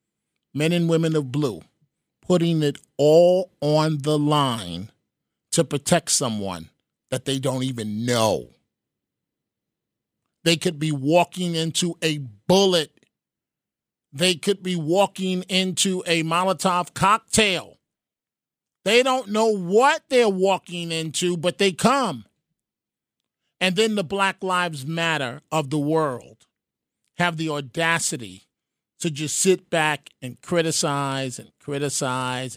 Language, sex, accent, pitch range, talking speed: English, male, American, 145-190 Hz, 120 wpm